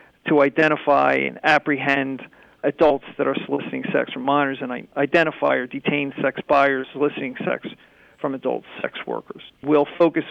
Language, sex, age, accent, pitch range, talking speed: English, male, 40-59, American, 135-155 Hz, 145 wpm